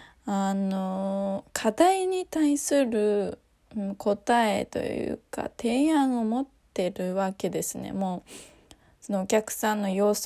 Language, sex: Japanese, female